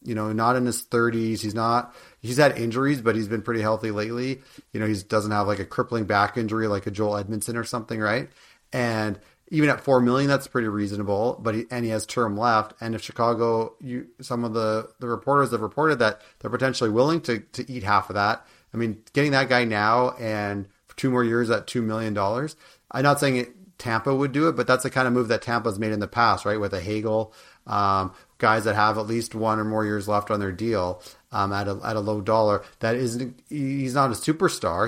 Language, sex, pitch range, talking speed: English, male, 105-125 Hz, 230 wpm